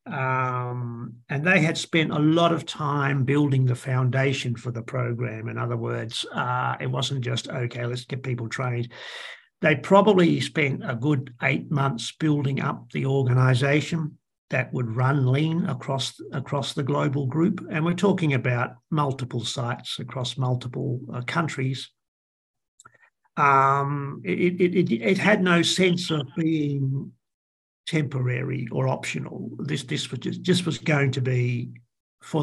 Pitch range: 125-155 Hz